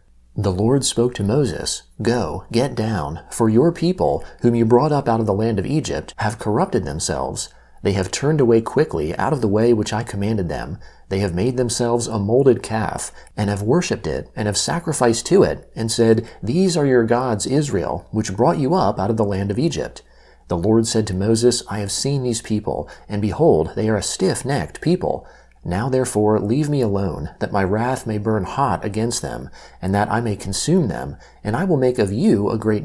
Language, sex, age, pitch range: English, male, 40-59, 100-125 Hz